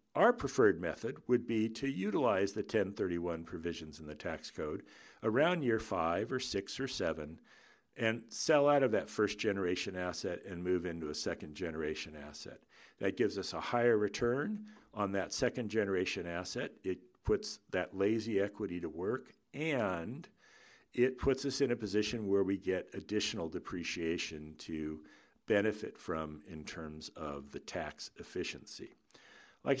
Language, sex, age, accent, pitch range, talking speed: English, male, 60-79, American, 85-120 Hz, 155 wpm